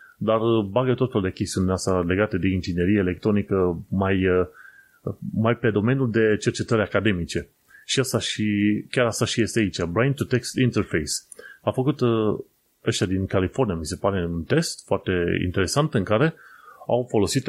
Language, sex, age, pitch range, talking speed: Romanian, male, 30-49, 95-125 Hz, 150 wpm